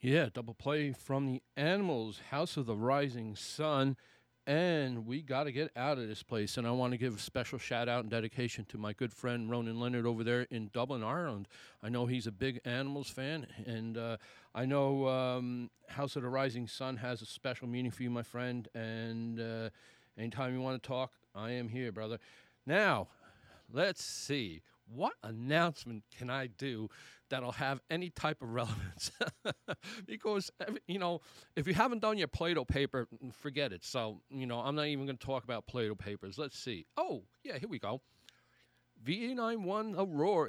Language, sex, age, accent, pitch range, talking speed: English, male, 40-59, American, 115-150 Hz, 185 wpm